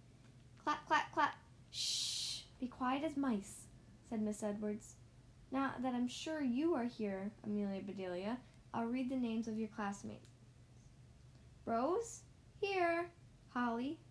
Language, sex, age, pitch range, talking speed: English, female, 10-29, 200-285 Hz, 130 wpm